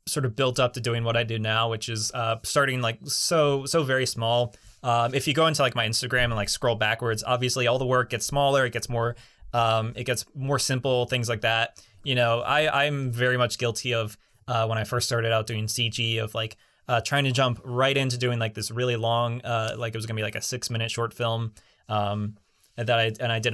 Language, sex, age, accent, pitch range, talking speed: English, male, 20-39, American, 115-130 Hz, 240 wpm